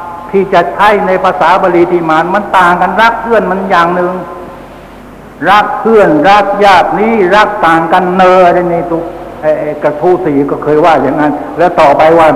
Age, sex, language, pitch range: 60-79, male, Thai, 165-200 Hz